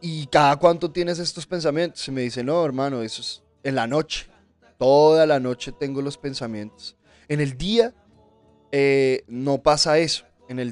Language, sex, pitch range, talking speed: Spanish, male, 125-155 Hz, 175 wpm